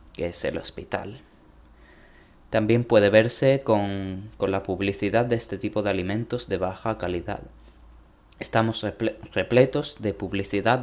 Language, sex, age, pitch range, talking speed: Spanish, male, 20-39, 95-120 Hz, 125 wpm